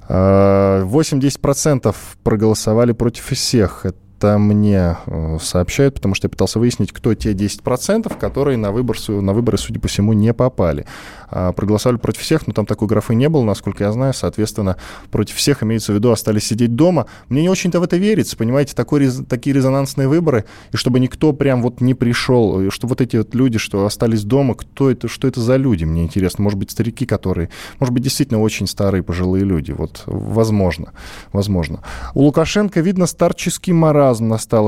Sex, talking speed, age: male, 170 wpm, 20-39